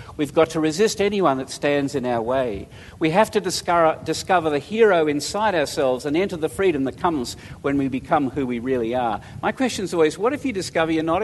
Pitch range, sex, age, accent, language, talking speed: 125-170 Hz, male, 50-69, Australian, English, 225 wpm